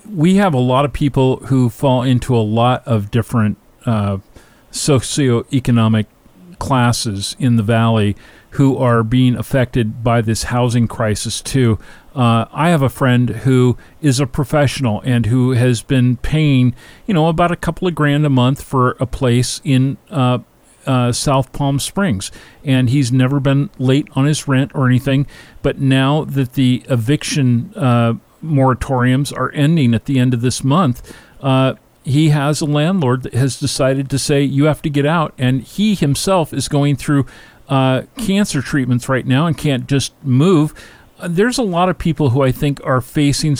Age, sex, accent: 40-59, male, American